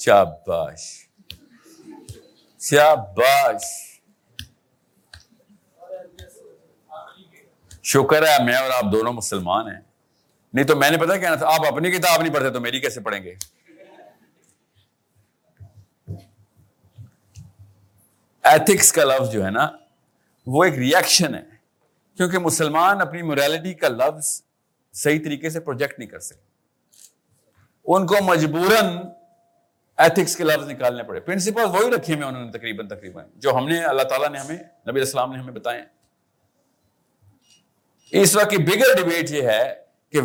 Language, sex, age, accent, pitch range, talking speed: English, male, 50-69, Indian, 135-195 Hz, 115 wpm